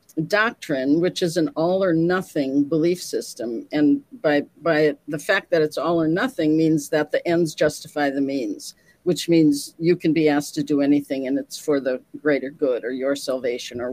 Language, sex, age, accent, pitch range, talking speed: English, female, 50-69, American, 145-180 Hz, 195 wpm